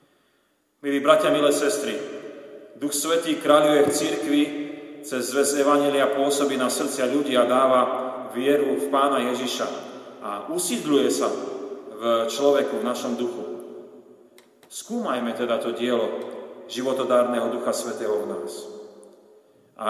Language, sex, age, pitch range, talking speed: Slovak, male, 40-59, 125-145 Hz, 120 wpm